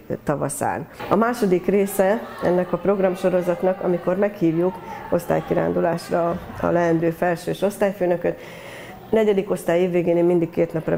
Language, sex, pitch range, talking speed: Hungarian, female, 165-190 Hz, 115 wpm